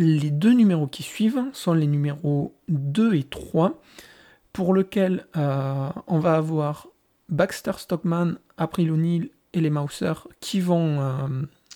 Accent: French